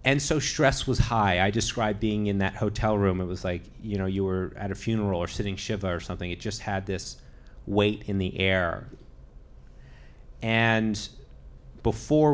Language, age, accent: English, 30-49, American